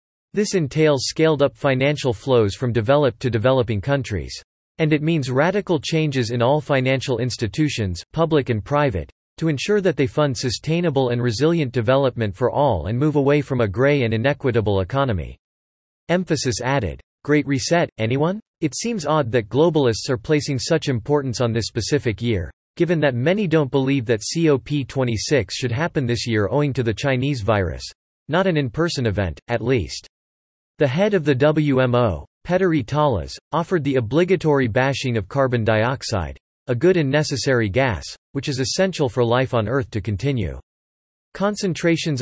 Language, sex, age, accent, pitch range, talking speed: English, male, 40-59, American, 115-150 Hz, 160 wpm